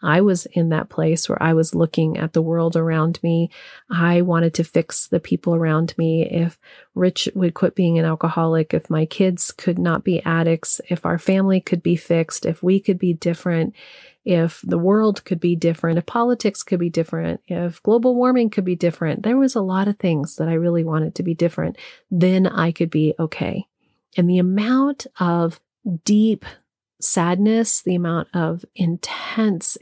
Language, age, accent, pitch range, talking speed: English, 40-59, American, 170-200 Hz, 185 wpm